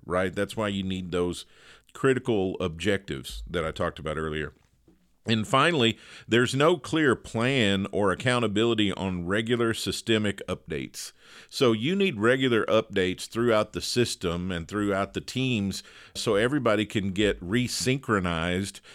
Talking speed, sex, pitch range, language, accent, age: 135 wpm, male, 95-125 Hz, English, American, 50-69